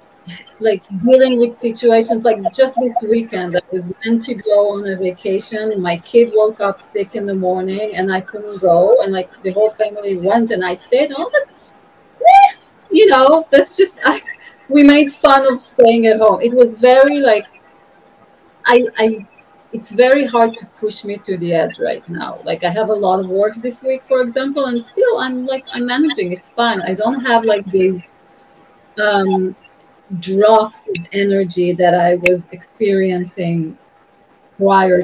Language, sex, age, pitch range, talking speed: English, female, 30-49, 190-245 Hz, 175 wpm